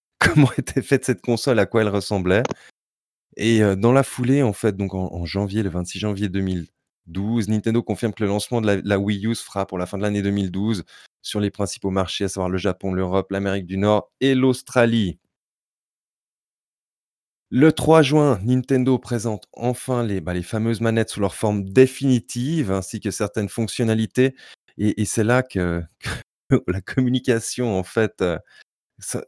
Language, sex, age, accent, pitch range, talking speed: French, male, 20-39, French, 95-120 Hz, 170 wpm